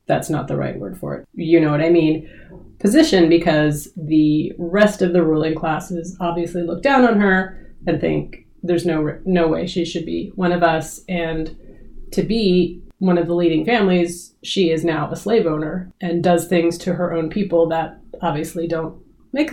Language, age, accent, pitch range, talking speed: English, 30-49, American, 160-190 Hz, 190 wpm